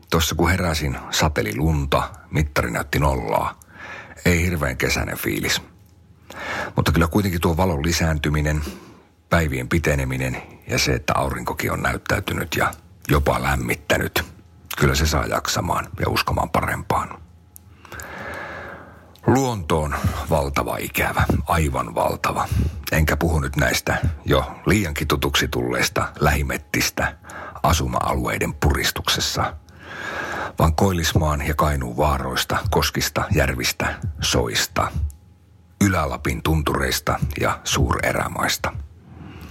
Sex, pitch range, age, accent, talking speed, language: male, 75-90 Hz, 50-69, native, 100 wpm, Finnish